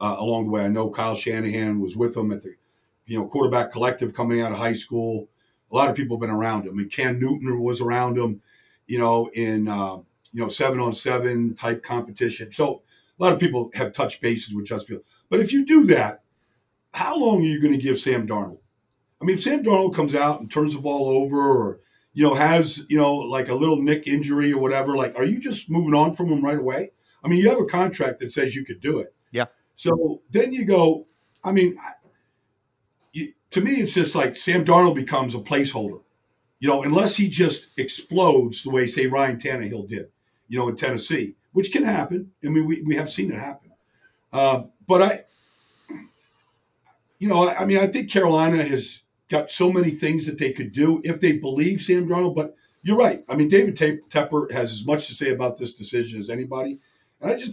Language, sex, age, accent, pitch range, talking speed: English, male, 50-69, American, 120-165 Hz, 215 wpm